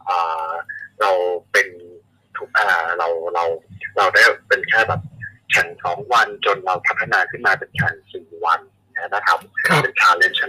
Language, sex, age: Thai, male, 20-39